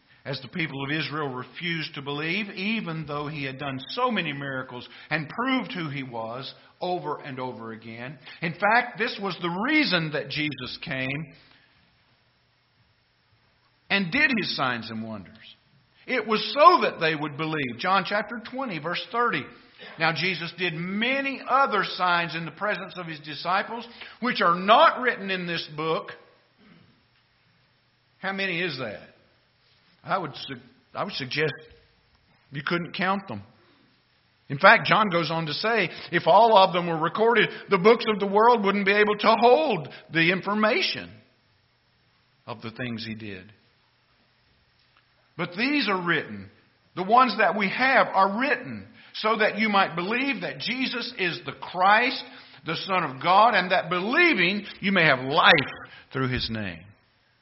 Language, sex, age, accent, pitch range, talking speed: English, male, 50-69, American, 130-210 Hz, 155 wpm